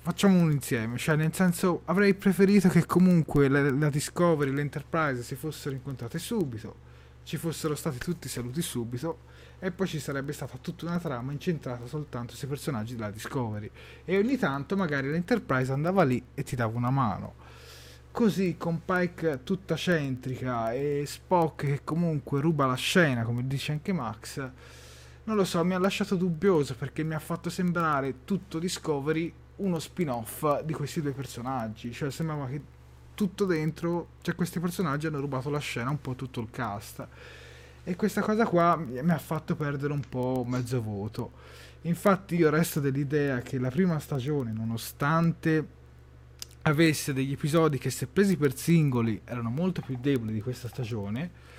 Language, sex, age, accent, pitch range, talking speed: Italian, male, 30-49, native, 125-170 Hz, 165 wpm